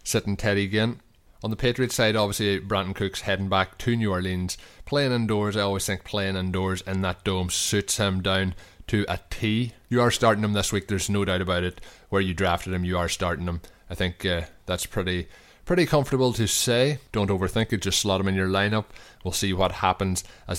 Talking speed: 215 wpm